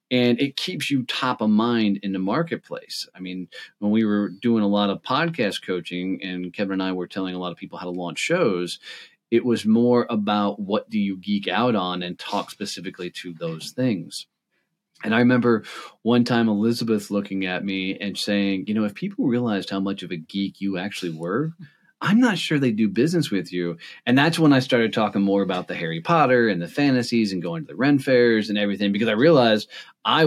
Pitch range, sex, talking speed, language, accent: 95-120 Hz, male, 215 wpm, English, American